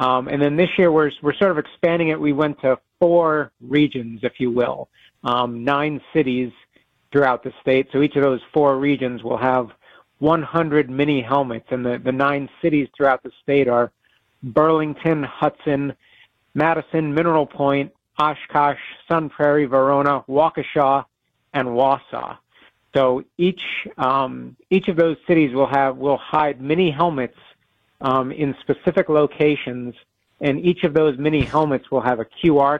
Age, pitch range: 50-69, 135-155 Hz